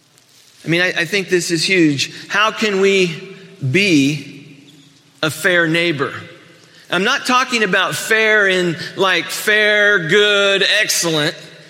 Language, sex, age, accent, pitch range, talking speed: English, male, 40-59, American, 145-190 Hz, 130 wpm